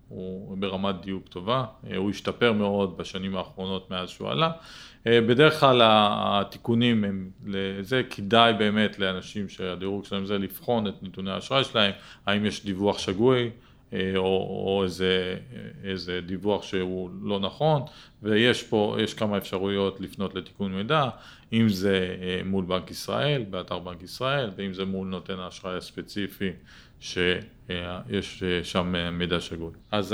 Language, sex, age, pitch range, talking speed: Hebrew, male, 40-59, 95-110 Hz, 130 wpm